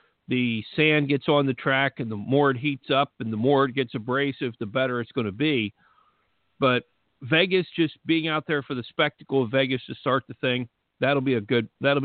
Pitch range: 120-145 Hz